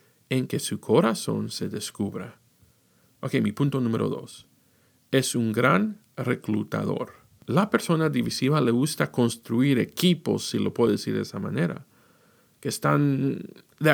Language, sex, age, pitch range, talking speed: Spanish, male, 50-69, 125-185 Hz, 140 wpm